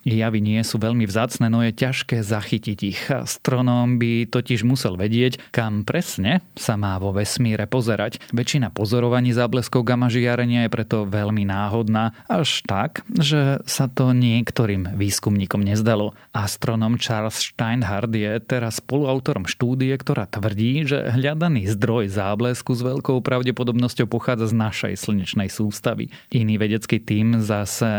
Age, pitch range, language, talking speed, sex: 30-49, 110-125 Hz, Slovak, 135 wpm, male